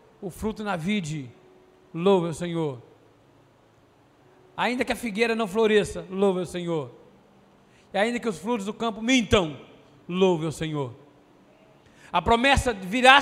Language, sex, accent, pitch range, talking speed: Portuguese, male, Brazilian, 210-310 Hz, 135 wpm